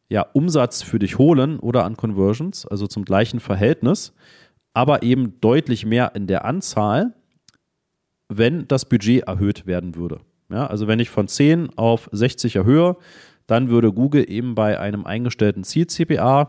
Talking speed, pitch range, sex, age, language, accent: 155 wpm, 100-130 Hz, male, 40-59, German, German